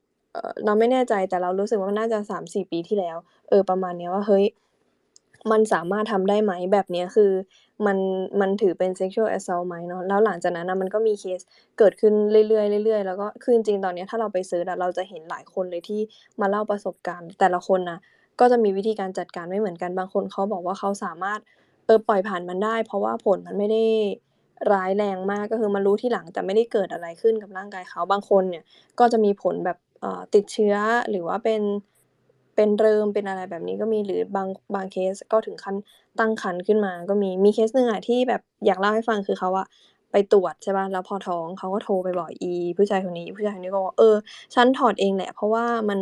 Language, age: Thai, 20-39